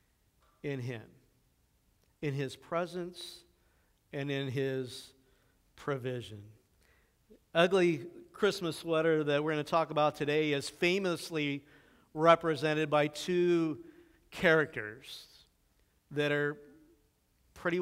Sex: male